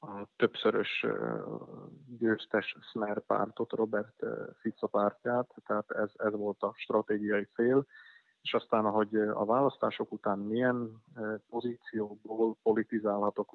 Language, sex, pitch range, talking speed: Hungarian, male, 100-110 Hz, 120 wpm